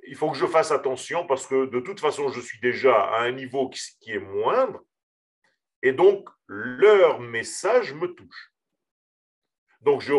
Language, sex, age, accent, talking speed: French, male, 50-69, French, 165 wpm